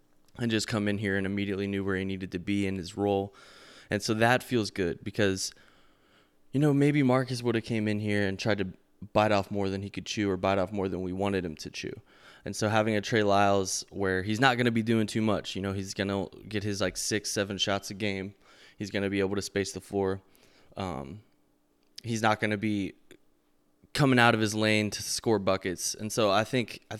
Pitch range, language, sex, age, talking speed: 100-110 Hz, English, male, 20-39, 240 wpm